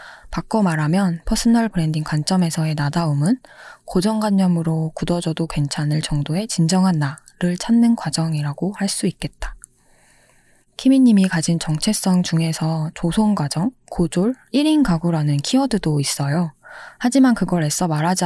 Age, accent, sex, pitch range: 20-39, native, female, 160-215 Hz